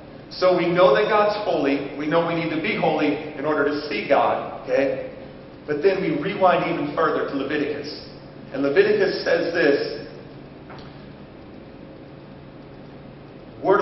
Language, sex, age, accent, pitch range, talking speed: English, male, 40-59, American, 140-180 Hz, 140 wpm